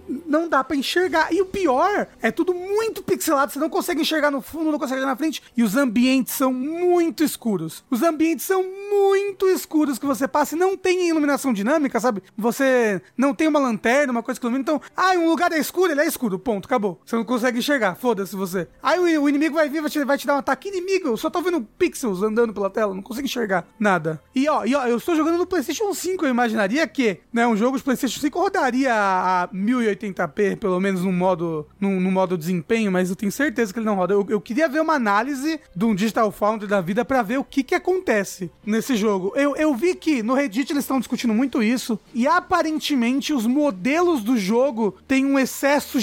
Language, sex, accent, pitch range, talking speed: Portuguese, male, Brazilian, 220-310 Hz, 225 wpm